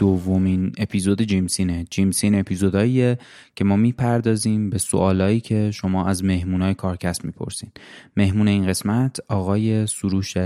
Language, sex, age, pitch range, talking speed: Persian, male, 20-39, 95-105 Hz, 120 wpm